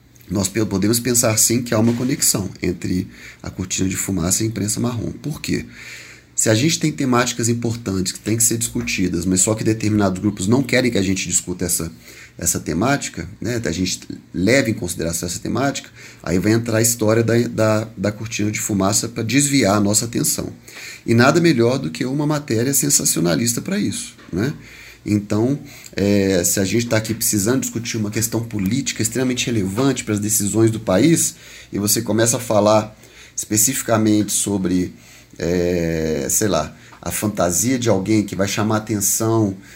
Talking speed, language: 170 wpm, Portuguese